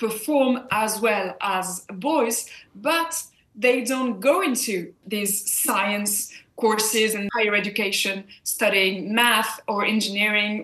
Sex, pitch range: female, 215-280 Hz